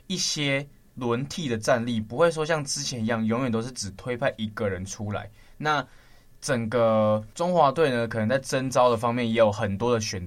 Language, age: Chinese, 20-39